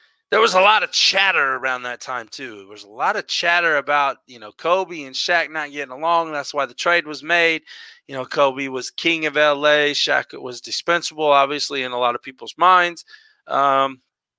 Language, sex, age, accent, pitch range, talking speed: English, male, 30-49, American, 140-190 Hz, 205 wpm